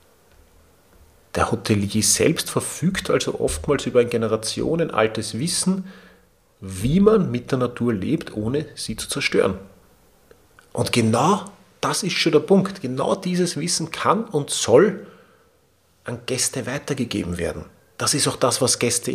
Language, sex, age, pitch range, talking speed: German, male, 40-59, 100-135 Hz, 140 wpm